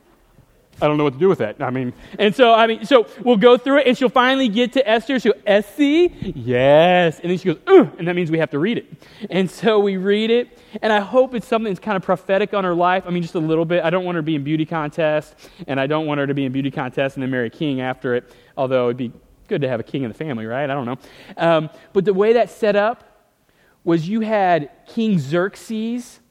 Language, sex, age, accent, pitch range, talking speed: English, male, 30-49, American, 175-255 Hz, 265 wpm